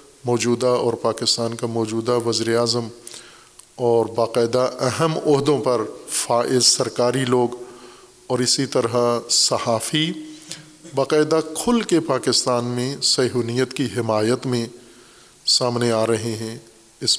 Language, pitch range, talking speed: Urdu, 115-135 Hz, 110 wpm